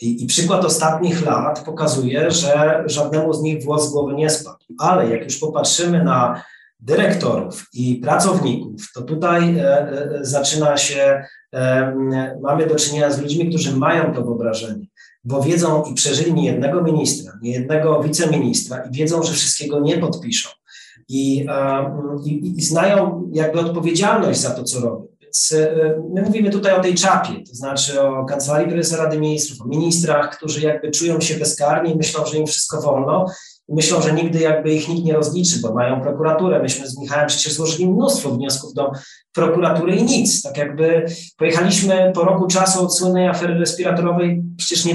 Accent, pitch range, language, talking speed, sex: native, 145-175 Hz, Polish, 160 wpm, male